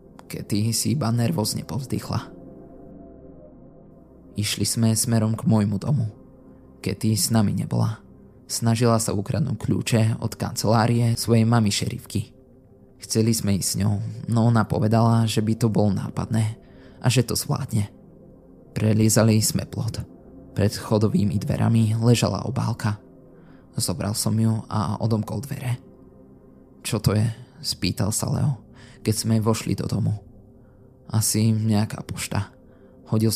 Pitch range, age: 105-115 Hz, 20-39